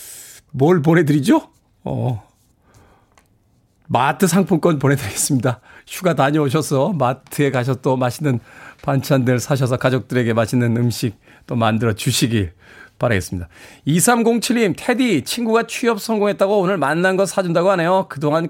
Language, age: Korean, 40-59